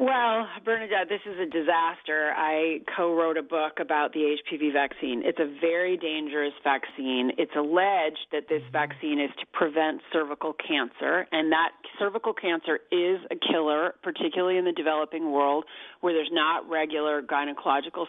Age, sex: 40-59, female